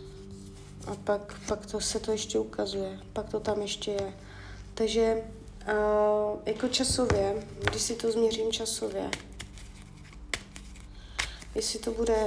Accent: native